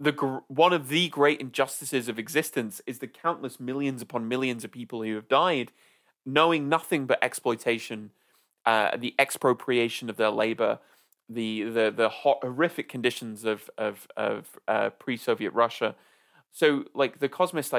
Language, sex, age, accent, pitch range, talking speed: English, male, 20-39, British, 115-150 Hz, 155 wpm